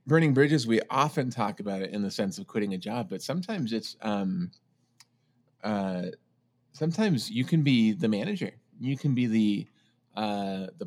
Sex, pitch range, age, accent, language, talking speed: male, 110-150 Hz, 30-49, American, English, 170 wpm